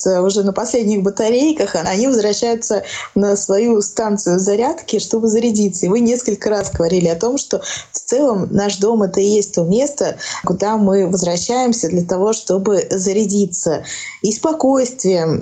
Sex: female